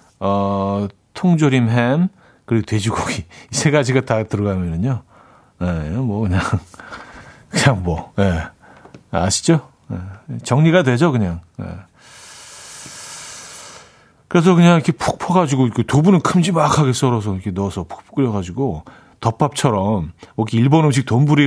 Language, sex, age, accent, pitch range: Korean, male, 40-59, native, 95-140 Hz